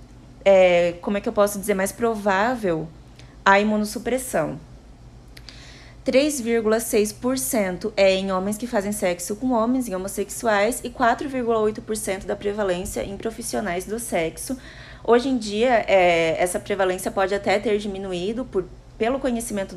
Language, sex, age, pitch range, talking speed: Portuguese, female, 20-39, 190-225 Hz, 130 wpm